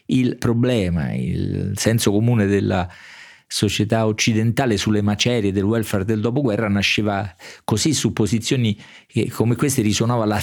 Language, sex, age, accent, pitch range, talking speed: Italian, male, 40-59, native, 100-120 Hz, 130 wpm